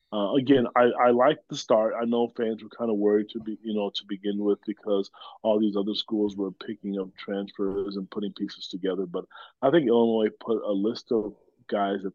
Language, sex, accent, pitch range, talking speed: English, male, American, 105-120 Hz, 215 wpm